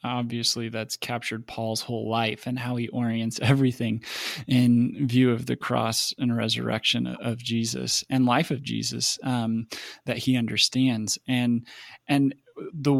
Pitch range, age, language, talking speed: 120-135 Hz, 20-39, English, 145 wpm